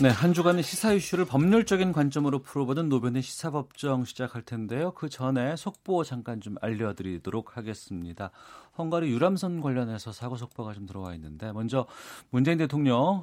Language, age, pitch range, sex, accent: Korean, 40-59, 100-145 Hz, male, native